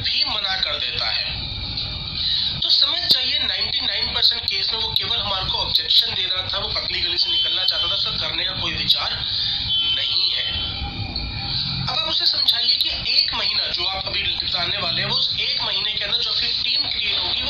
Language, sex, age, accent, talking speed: Hindi, male, 30-49, native, 55 wpm